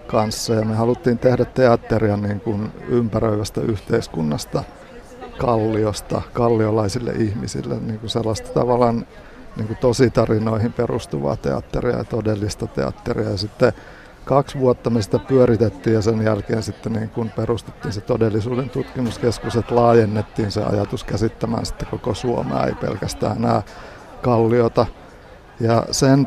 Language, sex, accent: Finnish, male, native